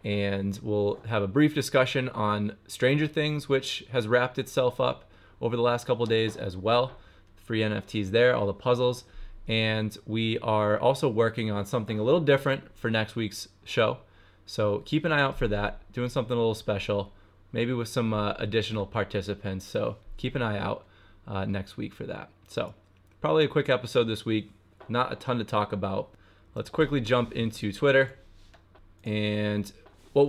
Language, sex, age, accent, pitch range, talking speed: English, male, 20-39, American, 105-120 Hz, 180 wpm